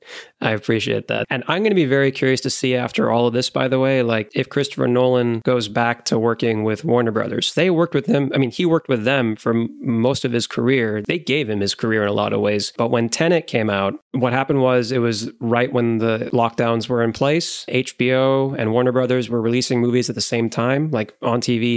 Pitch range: 115-135 Hz